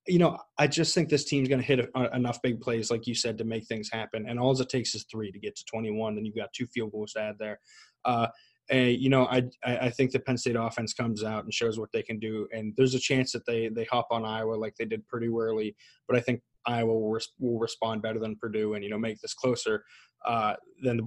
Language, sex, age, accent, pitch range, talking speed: English, male, 20-39, American, 115-130 Hz, 270 wpm